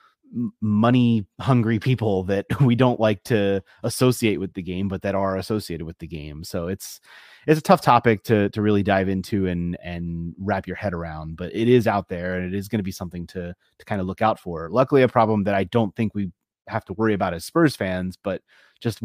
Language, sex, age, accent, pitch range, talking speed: English, male, 30-49, American, 95-125 Hz, 225 wpm